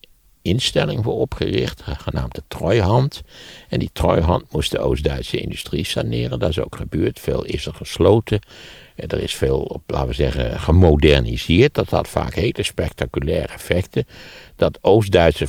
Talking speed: 145 wpm